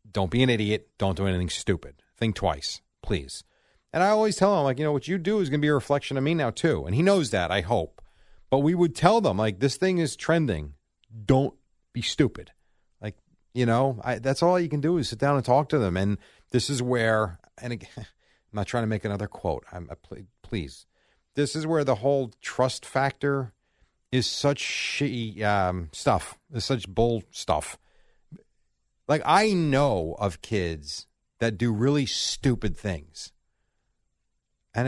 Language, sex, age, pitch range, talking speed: English, male, 40-59, 105-150 Hz, 190 wpm